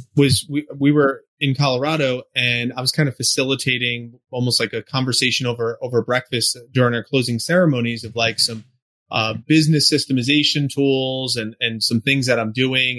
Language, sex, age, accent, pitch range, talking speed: English, male, 30-49, American, 115-140 Hz, 170 wpm